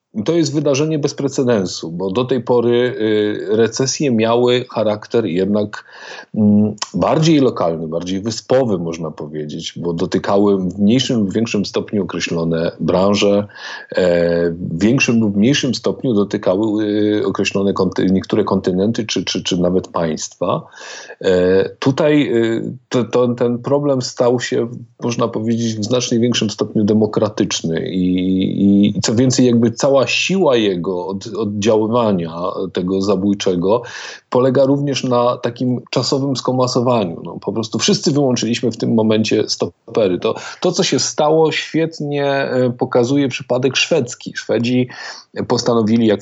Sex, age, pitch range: male, 40-59, 100-125 Hz